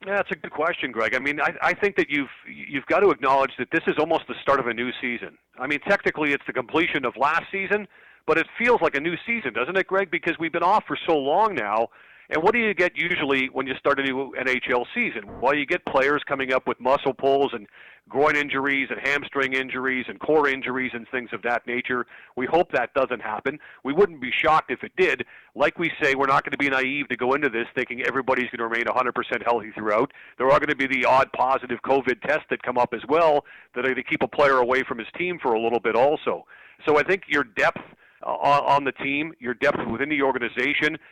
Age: 40-59